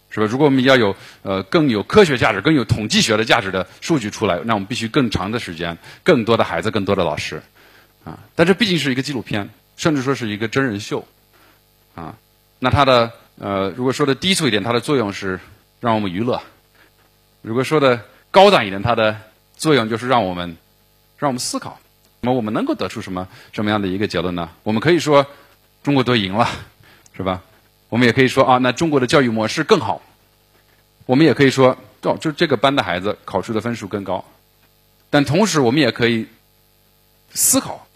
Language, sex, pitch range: Chinese, male, 100-135 Hz